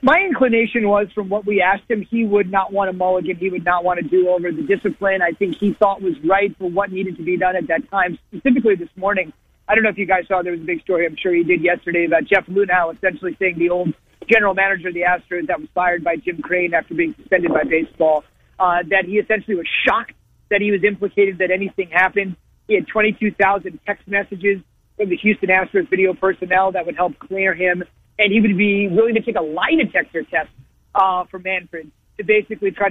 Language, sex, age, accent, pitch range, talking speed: English, male, 40-59, American, 180-210 Hz, 230 wpm